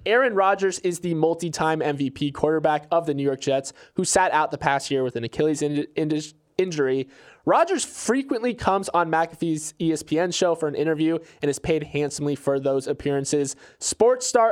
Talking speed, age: 170 wpm, 20-39